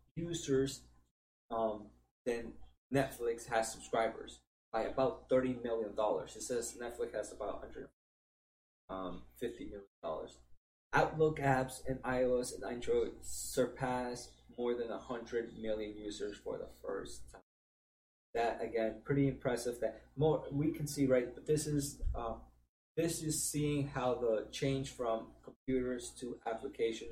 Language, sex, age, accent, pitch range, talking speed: English, male, 20-39, American, 110-140 Hz, 135 wpm